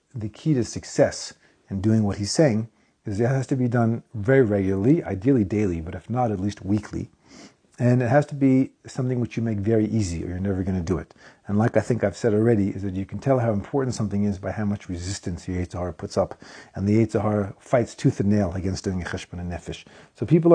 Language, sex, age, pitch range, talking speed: English, male, 40-59, 100-125 Hz, 240 wpm